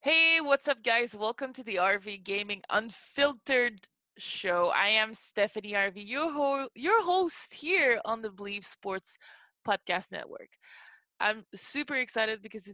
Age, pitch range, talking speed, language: 20-39, 195-270 Hz, 140 wpm, English